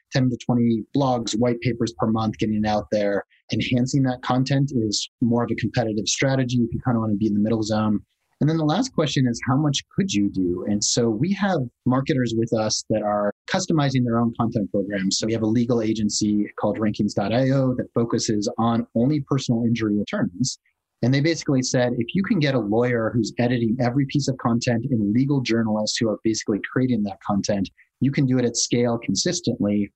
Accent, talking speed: American, 210 wpm